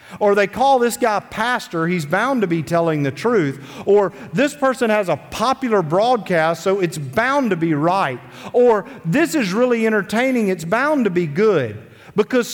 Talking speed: 175 wpm